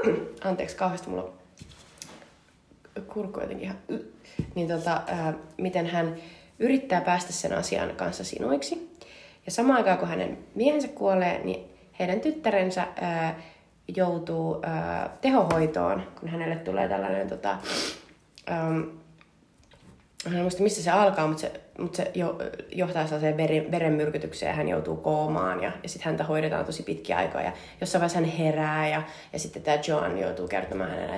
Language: Finnish